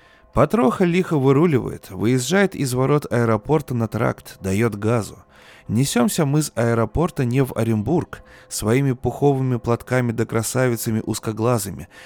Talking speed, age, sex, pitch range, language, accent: 120 wpm, 20-39, male, 110-145 Hz, Russian, native